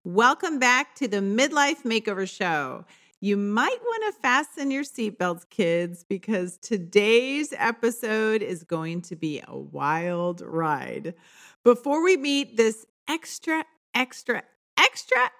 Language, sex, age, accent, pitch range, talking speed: English, female, 40-59, American, 185-255 Hz, 125 wpm